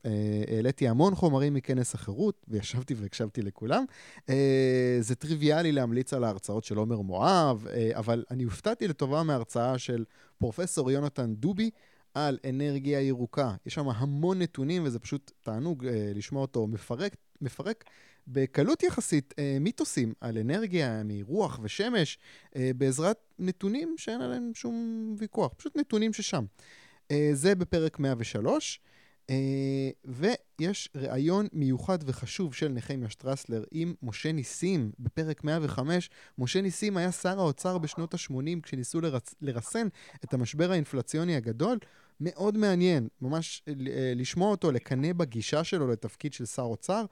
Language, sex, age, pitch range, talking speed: Hebrew, male, 20-39, 120-170 Hz, 135 wpm